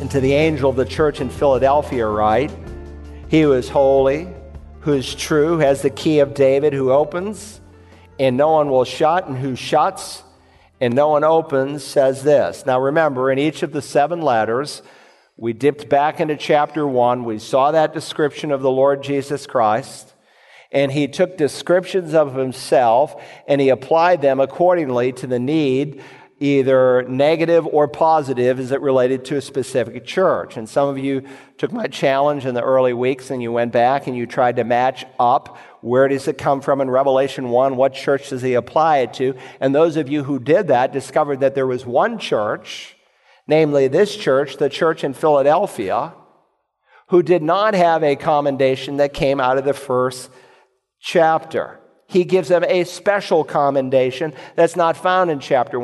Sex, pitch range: male, 130-155 Hz